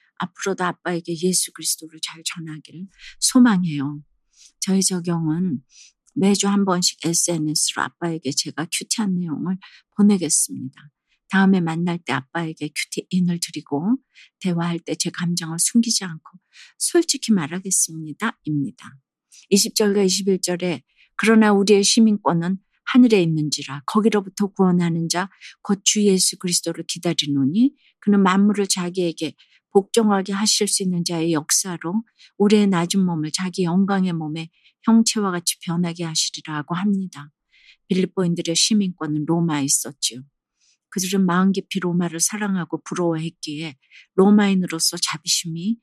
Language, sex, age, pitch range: Korean, female, 50-69, 160-200 Hz